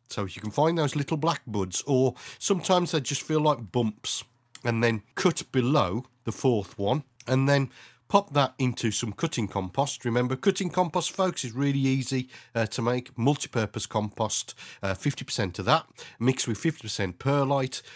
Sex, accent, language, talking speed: male, British, English, 165 wpm